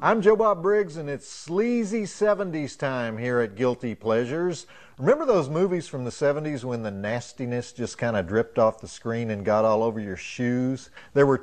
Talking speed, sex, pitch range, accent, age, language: 190 wpm, male, 120-160 Hz, American, 40-59, English